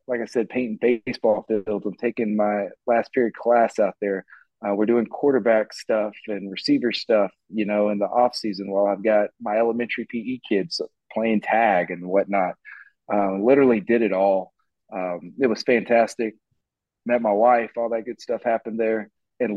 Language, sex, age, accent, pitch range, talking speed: English, male, 30-49, American, 100-115 Hz, 175 wpm